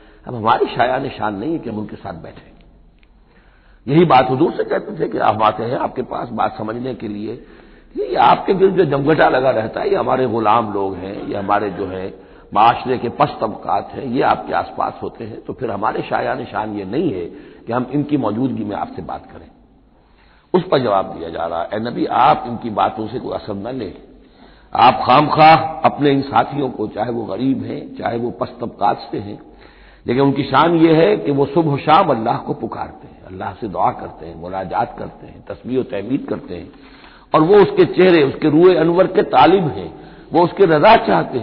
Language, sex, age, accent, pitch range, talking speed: Hindi, male, 60-79, native, 110-170 Hz, 200 wpm